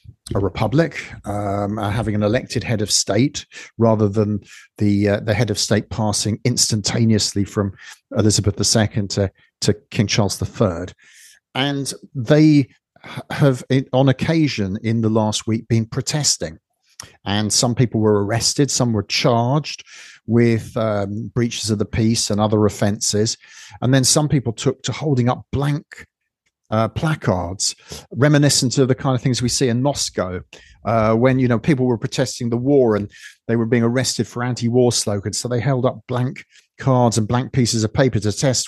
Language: English